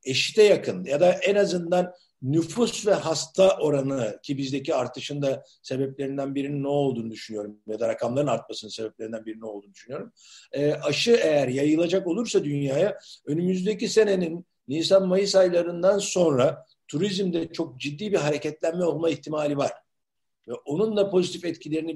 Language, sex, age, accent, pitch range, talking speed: Turkish, male, 60-79, native, 145-185 Hz, 140 wpm